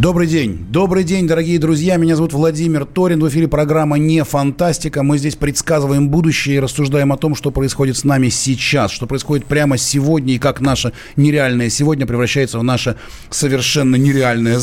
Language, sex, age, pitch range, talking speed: Russian, male, 30-49, 130-155 Hz, 170 wpm